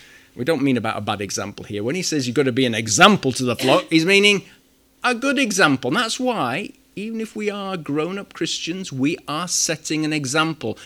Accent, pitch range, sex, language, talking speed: British, 125-175 Hz, male, English, 215 wpm